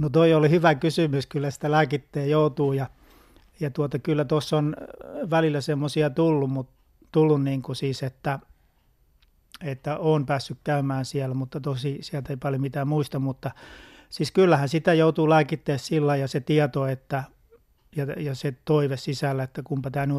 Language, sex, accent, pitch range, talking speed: Finnish, male, native, 135-155 Hz, 165 wpm